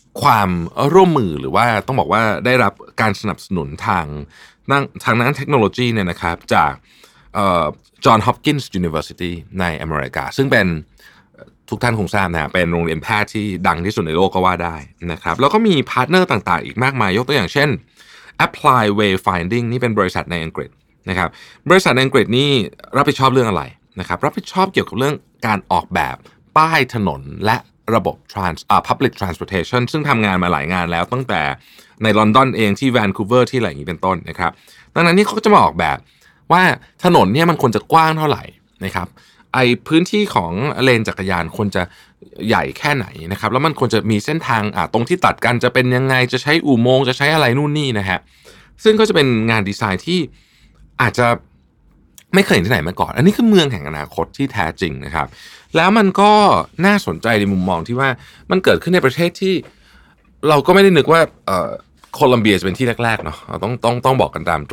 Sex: male